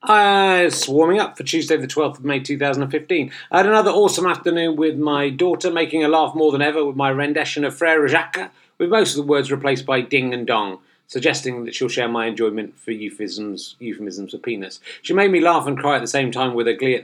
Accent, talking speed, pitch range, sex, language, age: British, 230 wpm, 115-155 Hz, male, English, 30-49